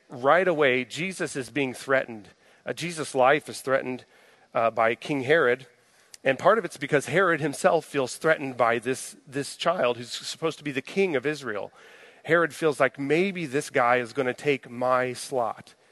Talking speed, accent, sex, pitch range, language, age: 180 wpm, American, male, 125-150 Hz, English, 40-59